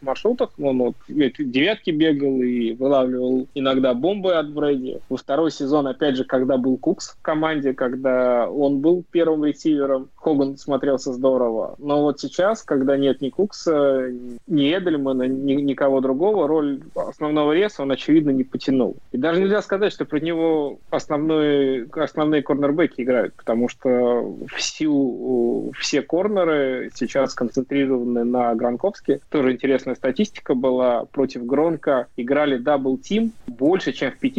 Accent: native